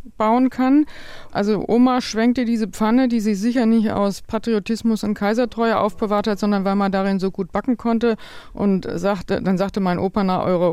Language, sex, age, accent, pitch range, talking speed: German, female, 50-69, German, 195-235 Hz, 185 wpm